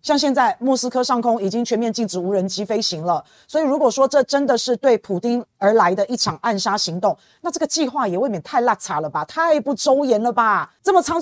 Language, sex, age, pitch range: Chinese, female, 30-49, 215-290 Hz